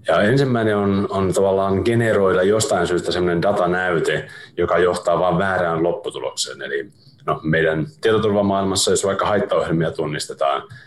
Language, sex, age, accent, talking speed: Finnish, male, 30-49, native, 125 wpm